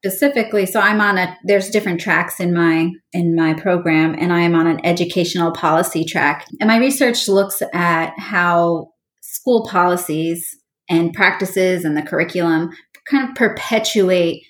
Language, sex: English, female